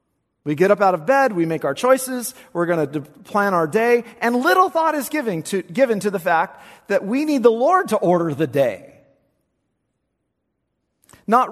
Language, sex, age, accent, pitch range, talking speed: English, male, 40-59, American, 150-220 Hz, 190 wpm